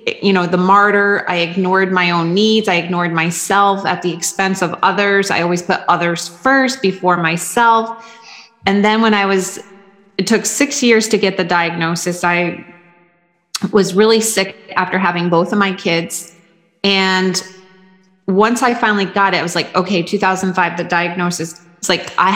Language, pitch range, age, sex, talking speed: English, 180-215 Hz, 30-49, female, 170 wpm